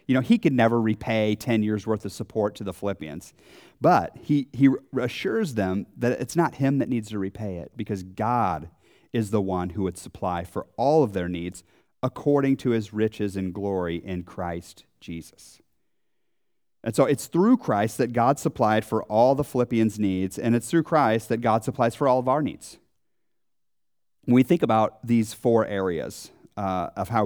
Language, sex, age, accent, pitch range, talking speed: English, male, 30-49, American, 100-130 Hz, 185 wpm